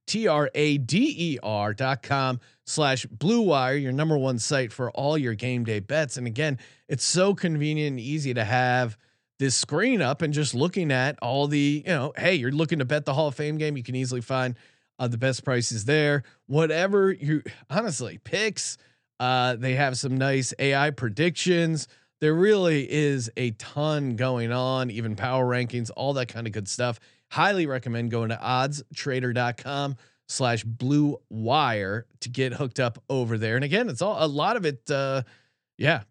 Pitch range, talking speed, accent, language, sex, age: 120-155 Hz, 185 wpm, American, English, male, 30-49